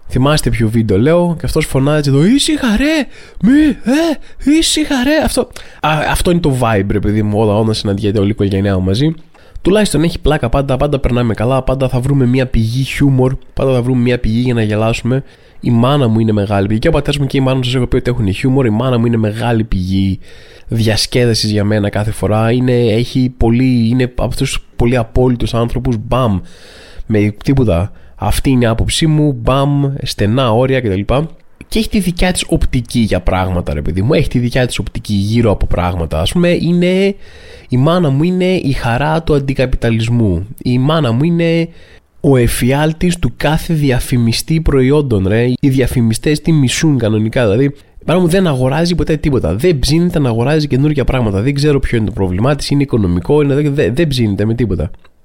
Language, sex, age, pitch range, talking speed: Greek, male, 20-39, 110-150 Hz, 190 wpm